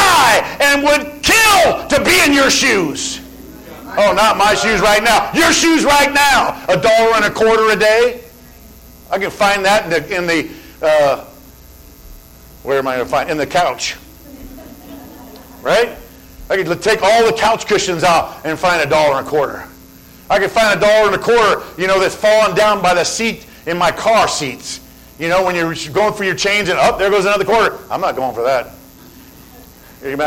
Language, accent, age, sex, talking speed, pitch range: English, American, 50-69, male, 200 wpm, 150-225 Hz